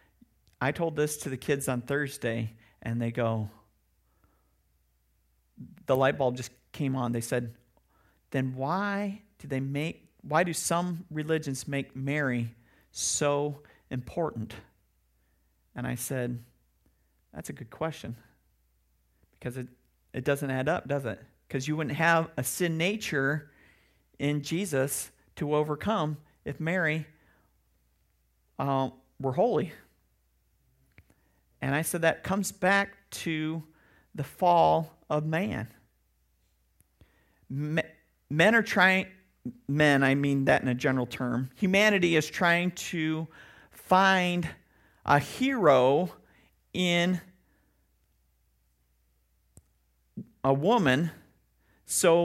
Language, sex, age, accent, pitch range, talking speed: English, male, 40-59, American, 110-170 Hz, 110 wpm